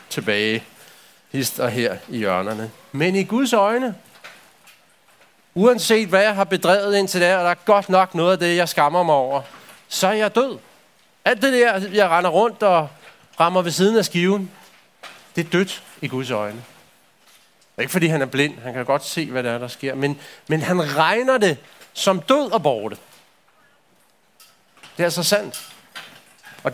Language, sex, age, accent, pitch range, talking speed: Danish, male, 40-59, native, 160-200 Hz, 180 wpm